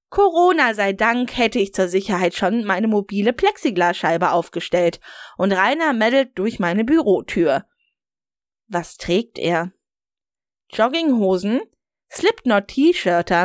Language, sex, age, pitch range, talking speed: German, female, 20-39, 190-265 Hz, 105 wpm